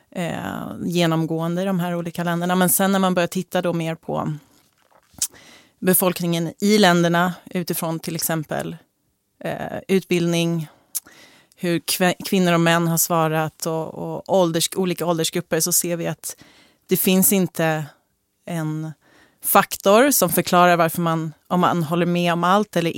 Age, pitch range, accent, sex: 30-49, 165-185 Hz, native, female